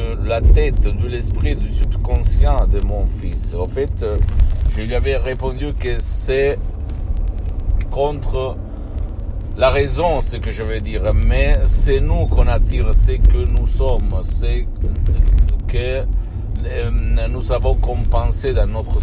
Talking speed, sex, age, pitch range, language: 130 wpm, male, 50-69, 80-105 Hz, Italian